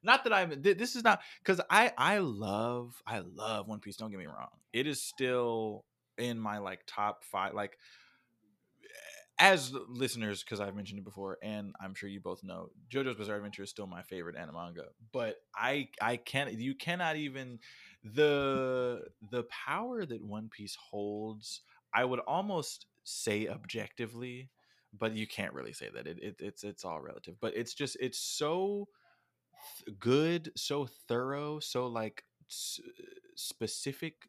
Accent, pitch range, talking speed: American, 110-150 Hz, 165 wpm